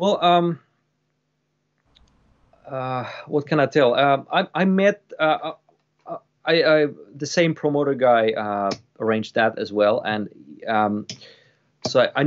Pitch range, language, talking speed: 110-140 Hz, English, 135 wpm